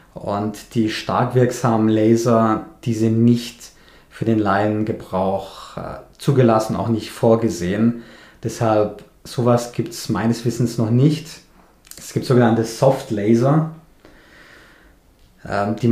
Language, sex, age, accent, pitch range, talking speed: German, male, 20-39, German, 110-125 Hz, 110 wpm